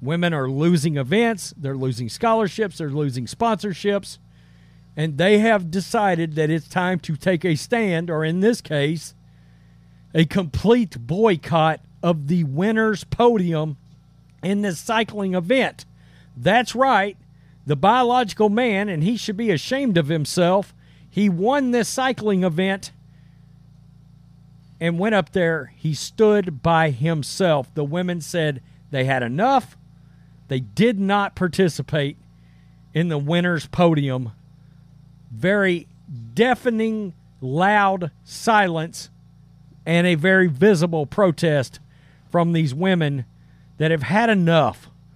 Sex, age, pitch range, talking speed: male, 50-69, 150-200 Hz, 120 wpm